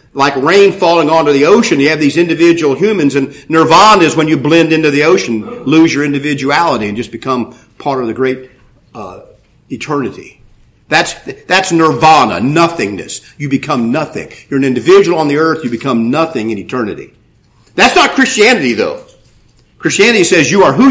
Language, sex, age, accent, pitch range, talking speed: English, male, 50-69, American, 130-185 Hz, 170 wpm